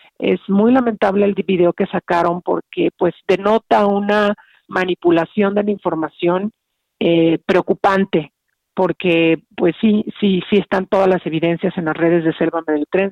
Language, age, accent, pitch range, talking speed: Spanish, 40-59, Mexican, 165-190 Hz, 145 wpm